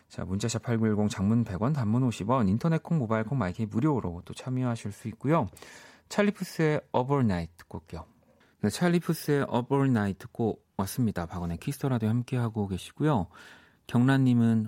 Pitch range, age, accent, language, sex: 95-135 Hz, 40-59, native, Korean, male